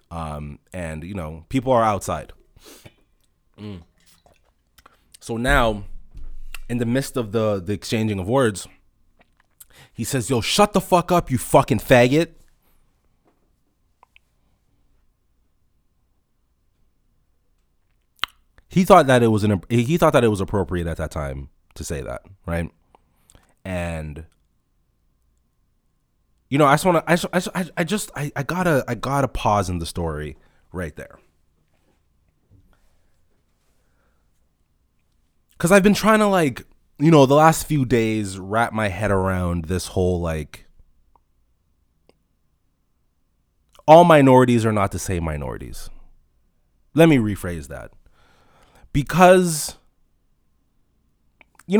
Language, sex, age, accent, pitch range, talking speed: English, male, 30-49, American, 80-135 Hz, 120 wpm